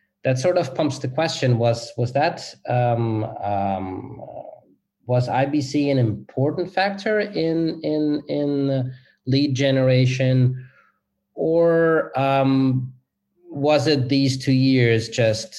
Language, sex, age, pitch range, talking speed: English, male, 30-49, 105-135 Hz, 115 wpm